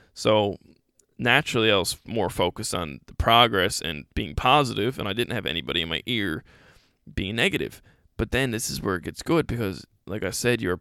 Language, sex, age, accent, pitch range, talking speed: English, male, 20-39, American, 105-125 Hz, 200 wpm